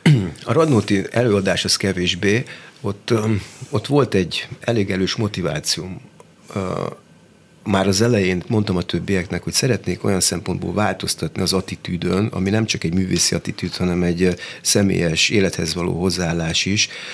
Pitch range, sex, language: 90-110 Hz, male, Hungarian